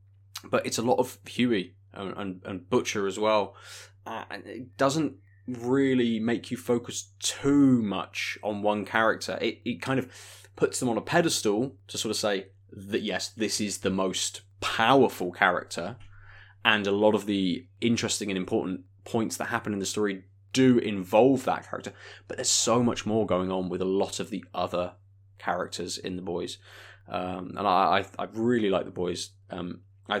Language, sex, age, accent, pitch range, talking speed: English, male, 20-39, British, 95-110 Hz, 185 wpm